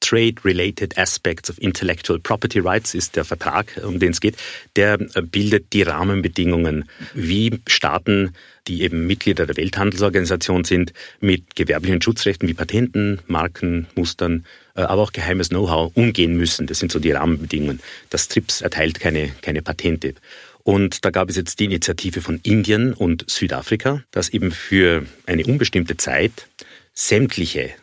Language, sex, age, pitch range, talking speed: German, male, 40-59, 85-100 Hz, 145 wpm